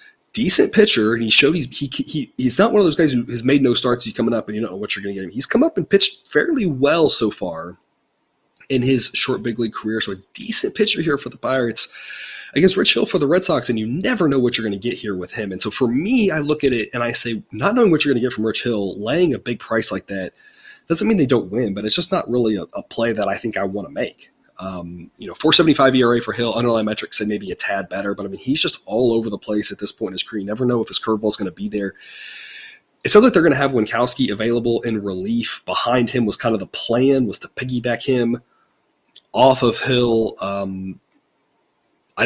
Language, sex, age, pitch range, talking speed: English, male, 30-49, 105-130 Hz, 265 wpm